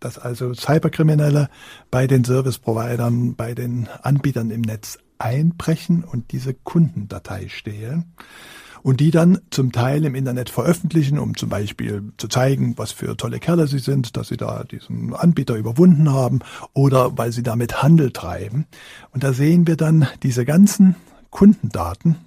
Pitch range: 115-150 Hz